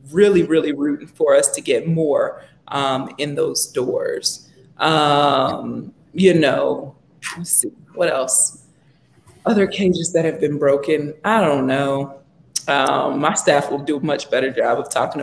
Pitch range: 145-170 Hz